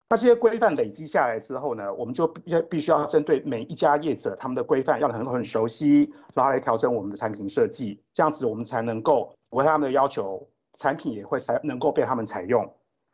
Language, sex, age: Chinese, male, 50-69